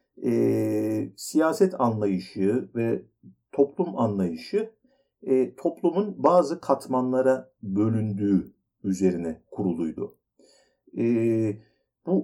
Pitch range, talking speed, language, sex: 100-150 Hz, 75 wpm, Turkish, male